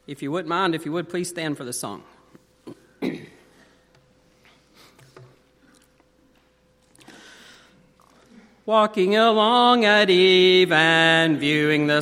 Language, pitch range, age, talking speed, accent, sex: English, 165-235 Hz, 40-59, 95 wpm, American, male